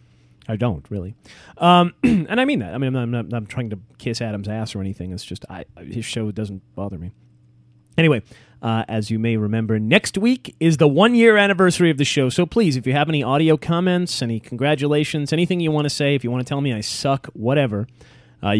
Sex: male